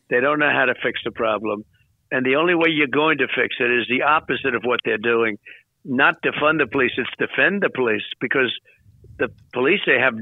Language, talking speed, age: English, 215 wpm, 60-79